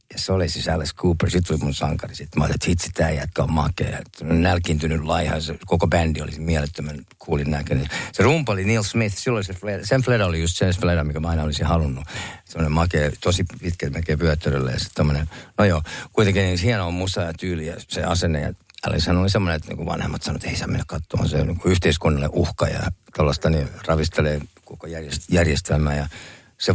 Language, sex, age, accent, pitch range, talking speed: Finnish, male, 50-69, native, 80-95 Hz, 210 wpm